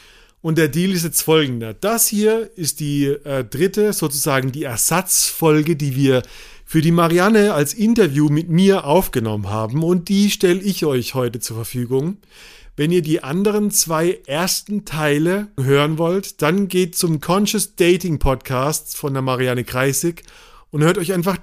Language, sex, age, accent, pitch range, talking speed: German, male, 40-59, German, 140-180 Hz, 160 wpm